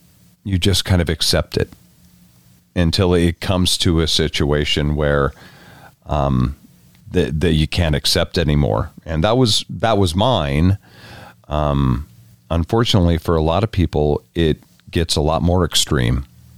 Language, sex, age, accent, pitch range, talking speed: English, male, 40-59, American, 75-95 Hz, 140 wpm